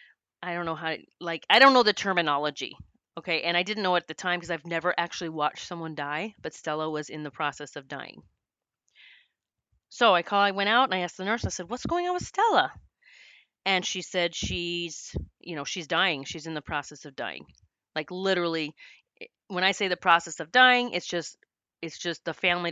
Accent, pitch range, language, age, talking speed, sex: American, 155-200 Hz, English, 30-49, 210 wpm, female